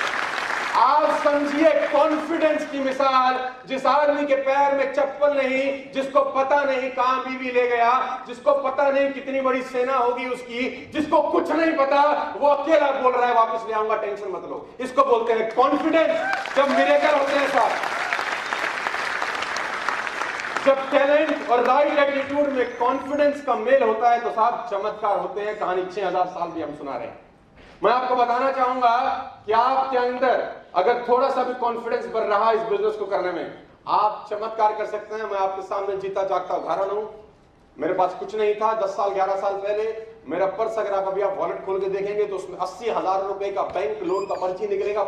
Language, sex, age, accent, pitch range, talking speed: Hindi, male, 40-59, native, 200-270 Hz, 130 wpm